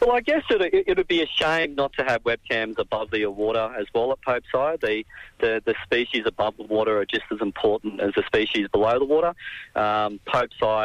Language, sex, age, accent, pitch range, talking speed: English, male, 40-59, Australian, 105-145 Hz, 225 wpm